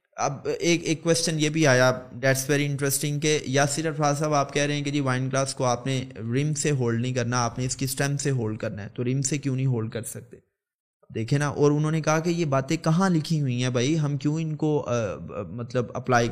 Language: Urdu